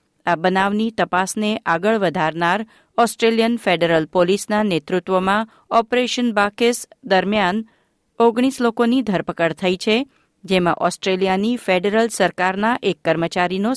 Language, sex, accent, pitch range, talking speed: Gujarati, female, native, 175-220 Hz, 100 wpm